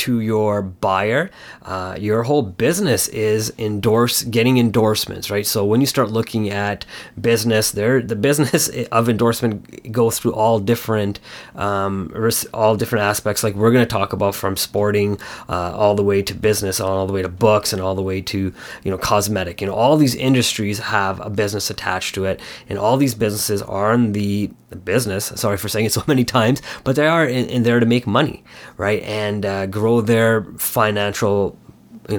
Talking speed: 190 wpm